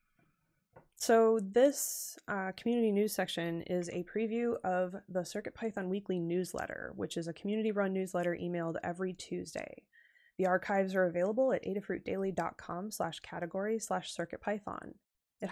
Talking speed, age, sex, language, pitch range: 125 wpm, 20-39, female, English, 175-225 Hz